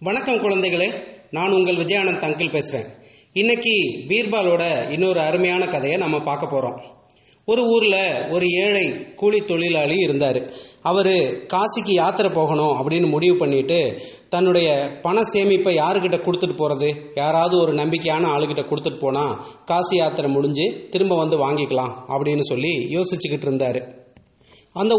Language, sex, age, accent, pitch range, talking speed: English, male, 30-49, Indian, 150-185 Hz, 120 wpm